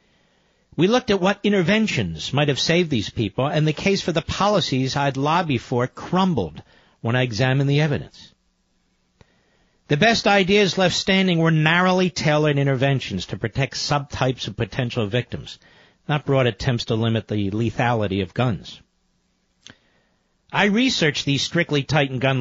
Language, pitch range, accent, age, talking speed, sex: English, 125-175 Hz, American, 50-69, 145 wpm, male